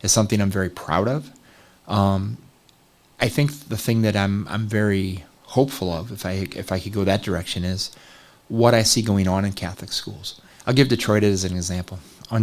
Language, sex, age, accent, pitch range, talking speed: English, male, 30-49, American, 95-110 Hz, 200 wpm